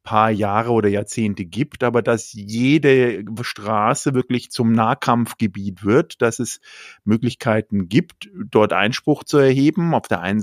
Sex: male